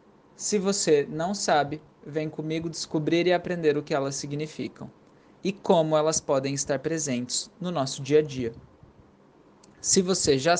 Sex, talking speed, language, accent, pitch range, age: male, 155 wpm, Portuguese, Brazilian, 145-180 Hz, 20-39